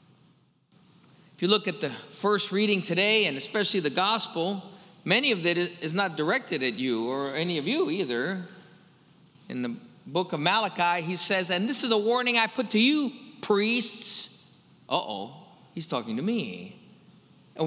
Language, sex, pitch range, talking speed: English, male, 170-215 Hz, 165 wpm